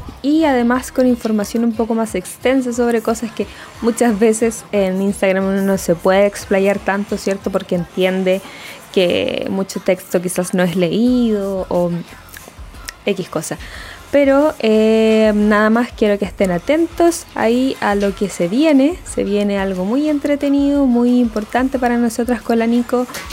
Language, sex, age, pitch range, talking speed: Spanish, female, 20-39, 185-225 Hz, 155 wpm